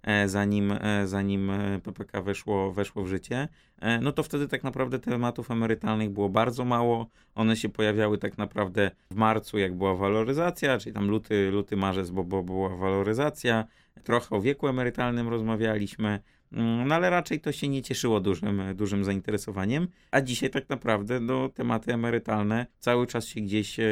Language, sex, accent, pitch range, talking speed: Polish, male, native, 100-120 Hz, 155 wpm